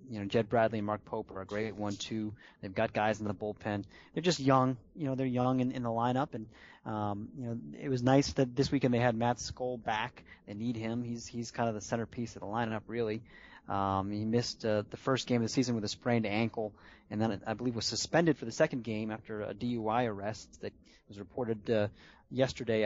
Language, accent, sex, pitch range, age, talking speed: English, American, male, 105-130 Hz, 30-49, 235 wpm